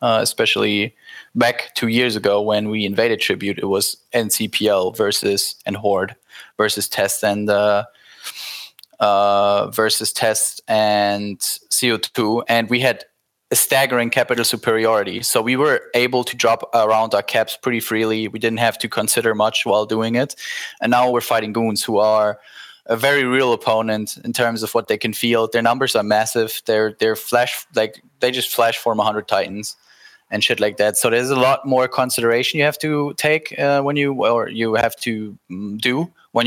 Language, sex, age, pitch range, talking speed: English, male, 10-29, 110-125 Hz, 175 wpm